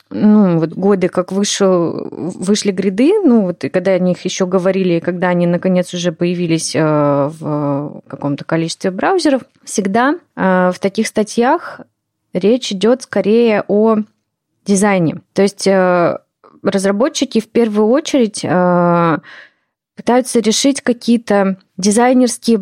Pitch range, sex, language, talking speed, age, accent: 180-225 Hz, female, Russian, 125 wpm, 20-39, native